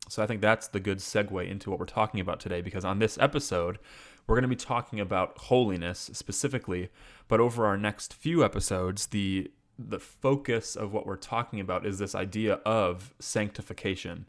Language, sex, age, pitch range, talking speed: English, male, 30-49, 95-110 Hz, 185 wpm